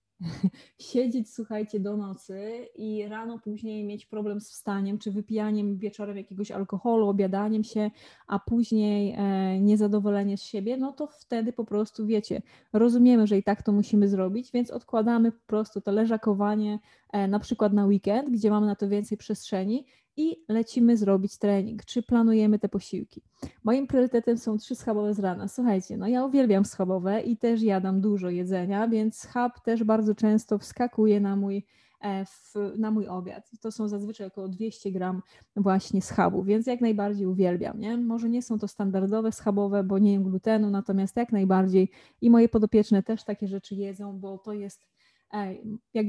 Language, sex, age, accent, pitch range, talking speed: Polish, female, 20-39, native, 200-230 Hz, 160 wpm